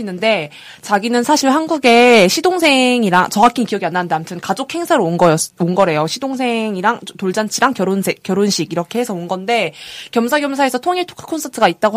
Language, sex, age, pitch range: Korean, female, 20-39, 185-245 Hz